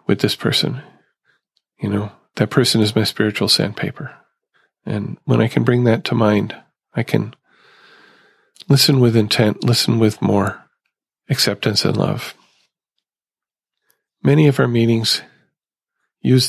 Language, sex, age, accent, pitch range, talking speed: English, male, 40-59, American, 110-130 Hz, 125 wpm